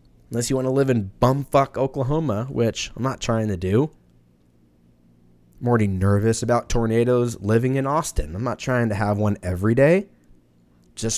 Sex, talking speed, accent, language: male, 165 wpm, American, English